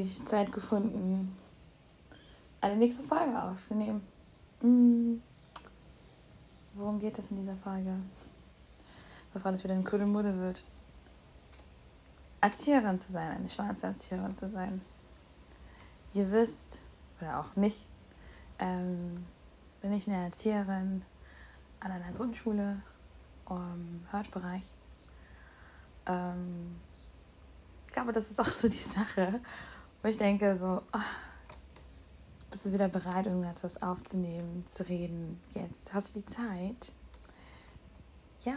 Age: 20-39